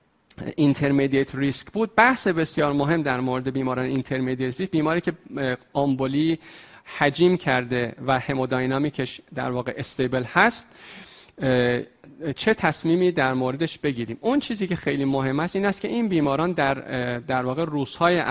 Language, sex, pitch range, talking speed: Persian, male, 130-170 Hz, 140 wpm